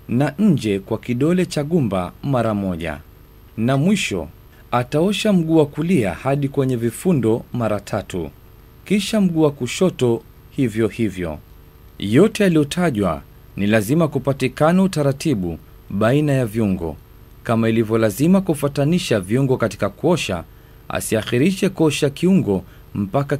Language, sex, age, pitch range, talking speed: Swahili, male, 40-59, 105-150 Hz, 115 wpm